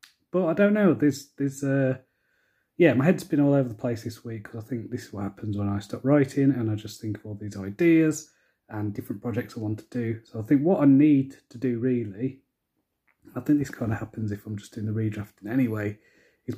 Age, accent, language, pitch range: 30-49, British, English, 110-135 Hz